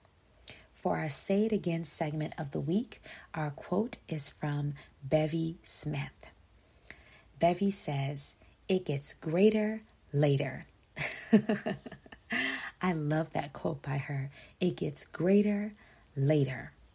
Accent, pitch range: American, 140-165 Hz